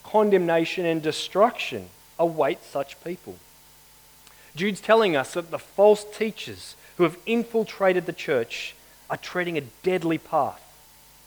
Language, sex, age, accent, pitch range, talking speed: English, male, 30-49, Australian, 145-200 Hz, 120 wpm